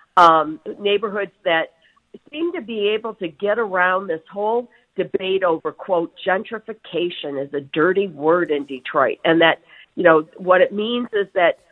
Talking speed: 160 wpm